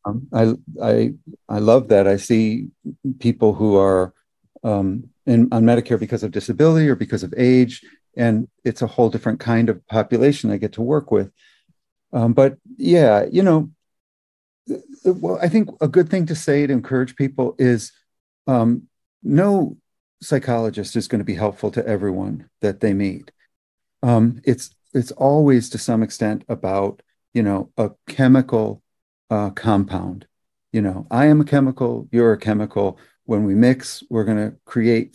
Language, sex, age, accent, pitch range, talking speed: English, male, 40-59, American, 110-135 Hz, 160 wpm